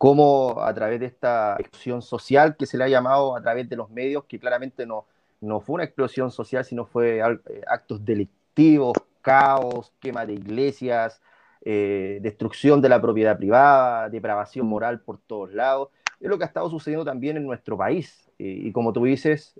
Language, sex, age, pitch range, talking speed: Spanish, male, 30-49, 110-140 Hz, 180 wpm